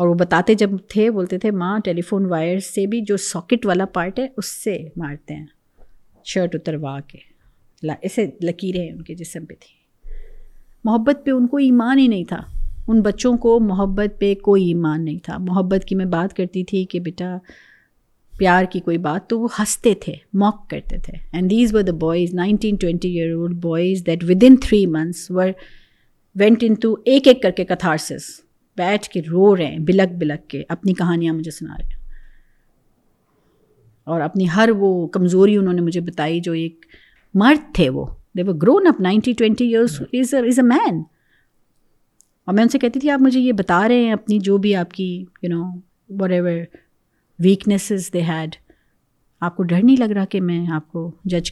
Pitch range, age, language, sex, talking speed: 170-210 Hz, 50-69, Urdu, female, 180 wpm